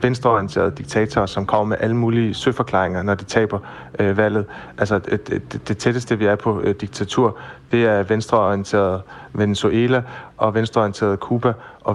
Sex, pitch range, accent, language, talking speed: male, 100-115 Hz, native, Danish, 155 wpm